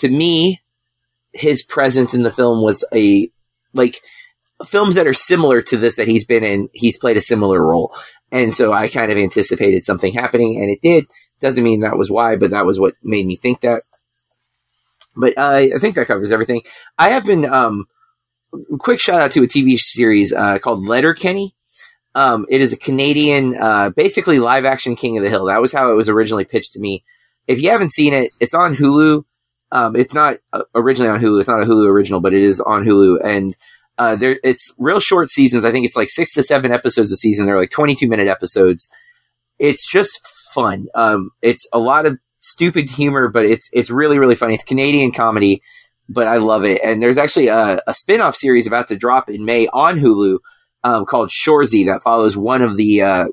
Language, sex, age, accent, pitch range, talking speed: English, male, 30-49, American, 110-145 Hz, 210 wpm